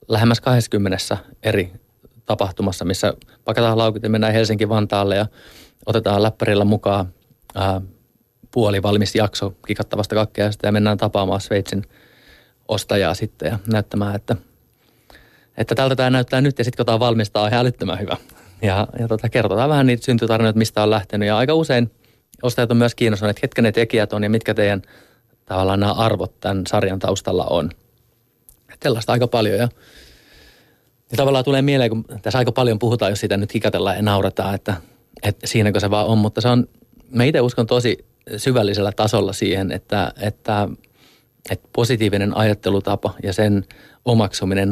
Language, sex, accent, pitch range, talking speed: Finnish, male, native, 100-120 Hz, 155 wpm